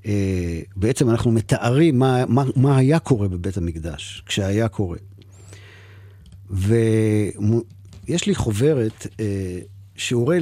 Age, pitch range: 50-69, 100-135 Hz